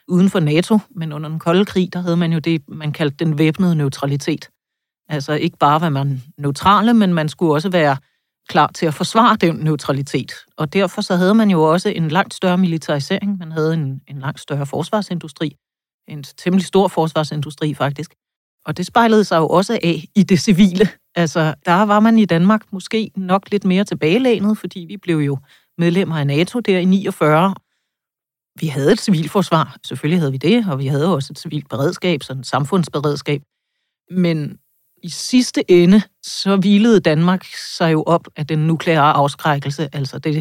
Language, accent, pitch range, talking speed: Danish, native, 150-185 Hz, 185 wpm